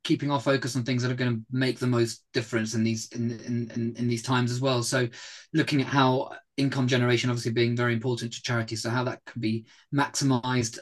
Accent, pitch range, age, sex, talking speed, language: British, 115-125 Hz, 30-49, male, 220 wpm, English